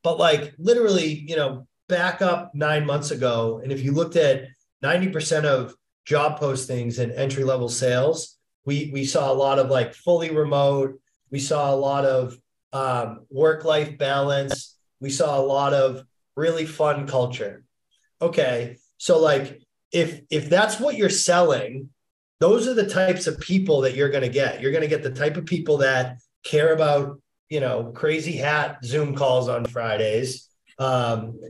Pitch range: 130-160 Hz